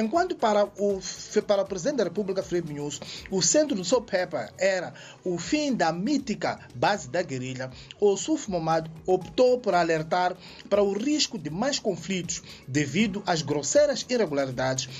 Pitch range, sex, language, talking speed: 155-220 Hz, male, Portuguese, 155 wpm